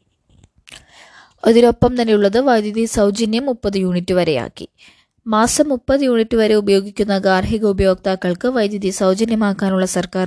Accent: native